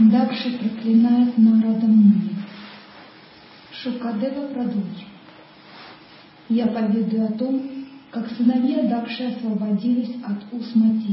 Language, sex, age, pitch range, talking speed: Russian, male, 40-59, 205-240 Hz, 85 wpm